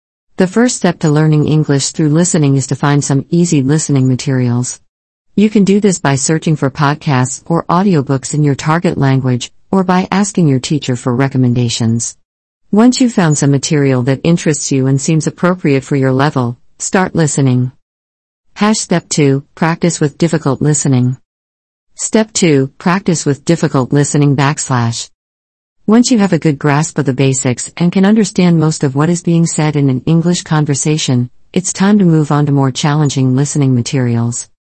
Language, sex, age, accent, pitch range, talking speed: English, female, 50-69, American, 130-165 Hz, 170 wpm